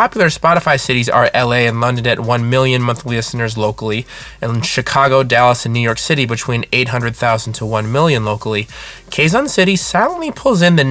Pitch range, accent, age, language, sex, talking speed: 120-160 Hz, American, 20-39, English, male, 180 wpm